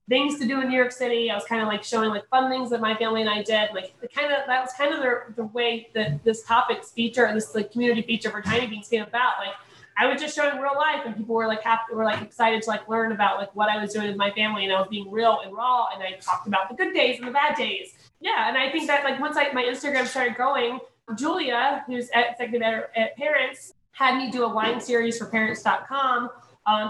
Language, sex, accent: English, female, American